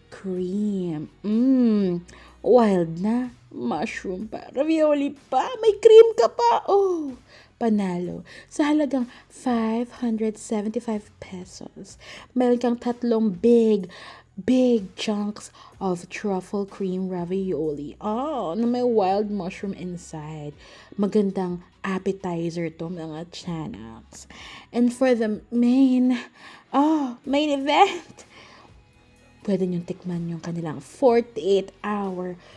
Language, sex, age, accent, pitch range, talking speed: English, female, 20-39, Filipino, 185-250 Hz, 95 wpm